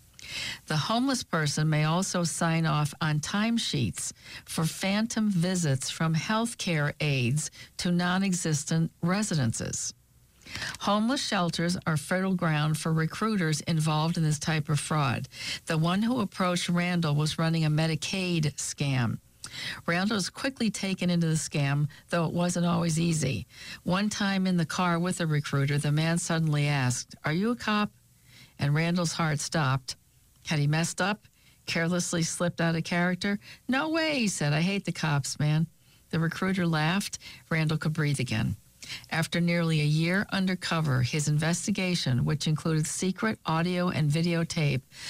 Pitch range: 150-180 Hz